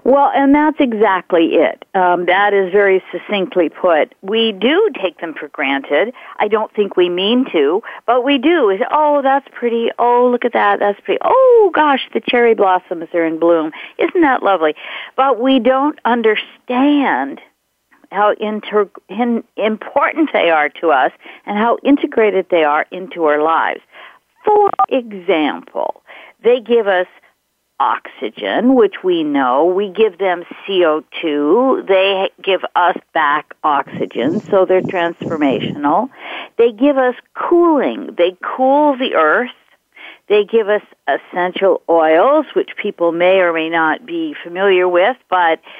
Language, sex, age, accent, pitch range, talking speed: English, female, 50-69, American, 185-265 Hz, 140 wpm